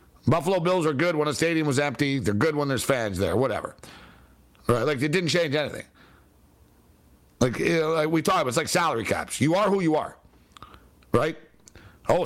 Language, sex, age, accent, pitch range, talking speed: English, male, 60-79, American, 135-190 Hz, 195 wpm